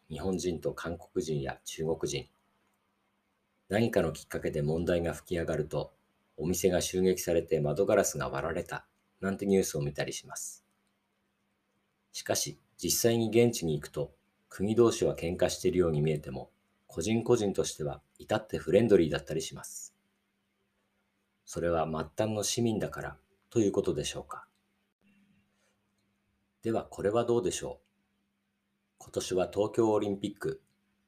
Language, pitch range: Japanese, 85-100 Hz